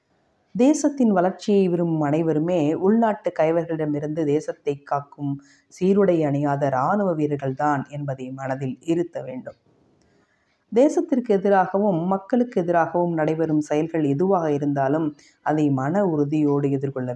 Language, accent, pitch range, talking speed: Tamil, native, 140-165 Hz, 100 wpm